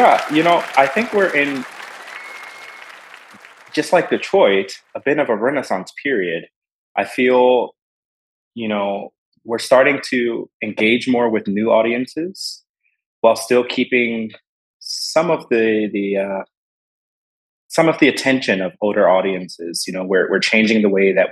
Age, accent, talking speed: 30-49, American, 145 wpm